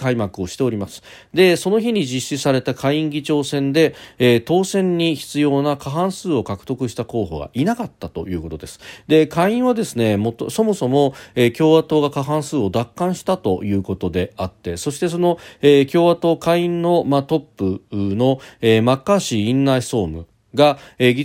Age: 40-59